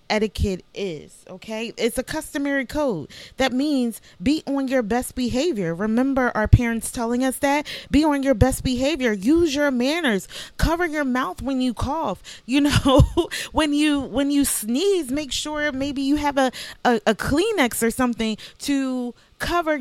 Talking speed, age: 165 wpm, 30-49